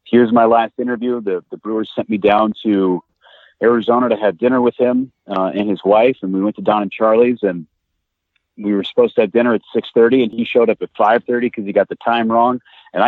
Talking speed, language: 240 wpm, English